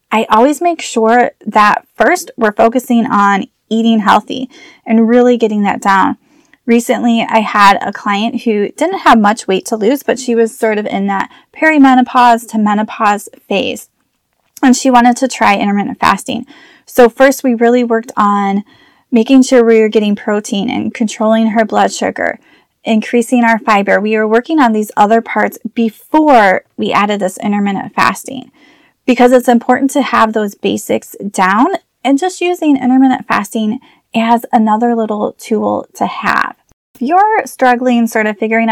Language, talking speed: English, 160 wpm